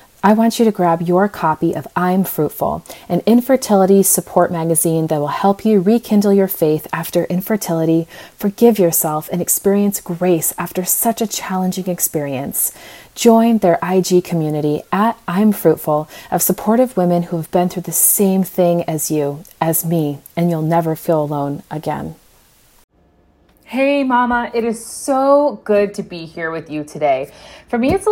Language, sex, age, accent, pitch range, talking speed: English, female, 30-49, American, 165-215 Hz, 160 wpm